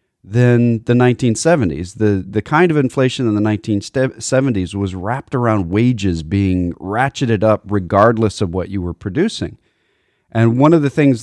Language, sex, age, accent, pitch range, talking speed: English, male, 40-59, American, 95-125 Hz, 155 wpm